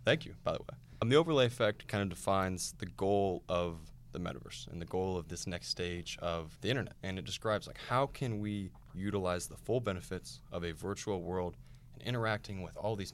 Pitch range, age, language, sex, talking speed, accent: 90-115 Hz, 20-39, English, male, 215 wpm, American